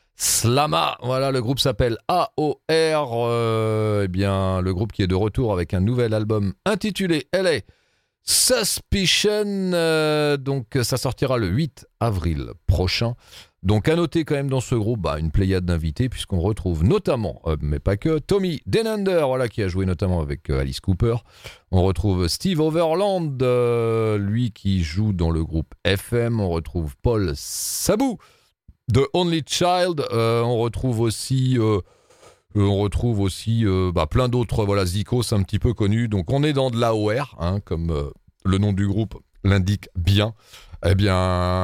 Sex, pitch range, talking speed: male, 95-135 Hz, 165 wpm